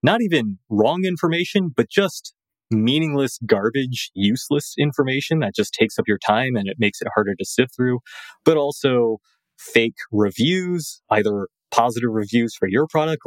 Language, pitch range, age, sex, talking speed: English, 105-140 Hz, 20-39, male, 155 wpm